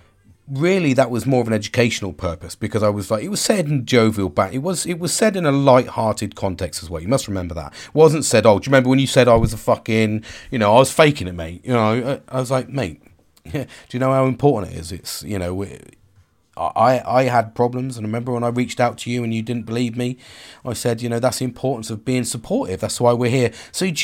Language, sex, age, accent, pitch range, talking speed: English, male, 40-59, British, 105-150 Hz, 260 wpm